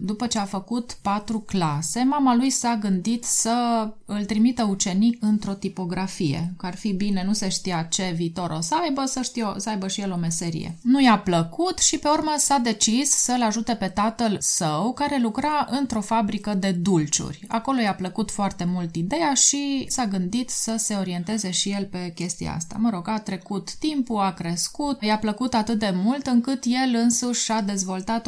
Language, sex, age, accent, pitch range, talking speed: Romanian, female, 20-39, native, 185-235 Hz, 190 wpm